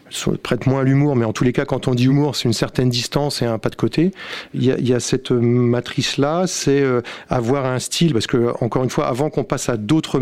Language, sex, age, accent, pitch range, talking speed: French, male, 40-59, French, 120-140 Hz, 265 wpm